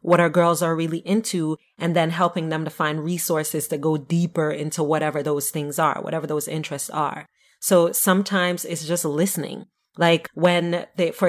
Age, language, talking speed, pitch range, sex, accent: 30-49, English, 180 wpm, 160-180 Hz, female, American